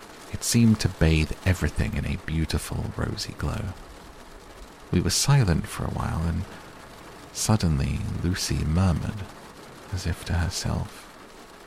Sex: male